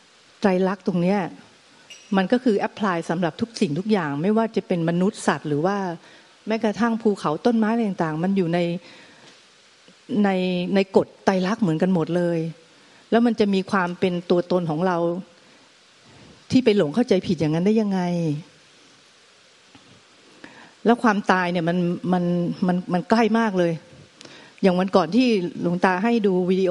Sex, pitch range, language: female, 180-235 Hz, Thai